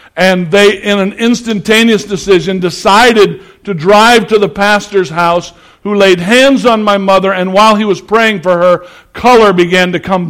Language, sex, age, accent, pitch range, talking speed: English, male, 60-79, American, 180-215 Hz, 175 wpm